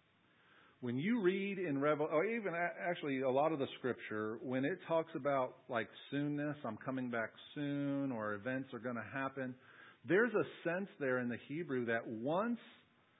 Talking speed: 175 wpm